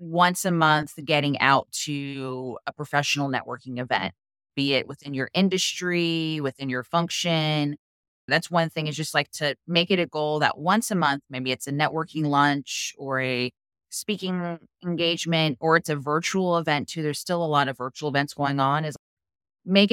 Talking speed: 180 wpm